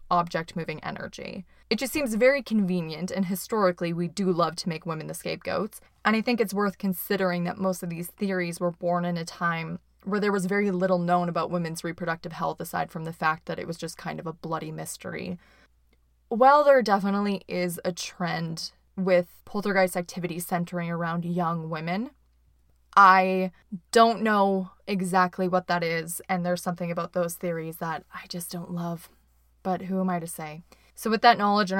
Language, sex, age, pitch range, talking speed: English, female, 20-39, 170-195 Hz, 185 wpm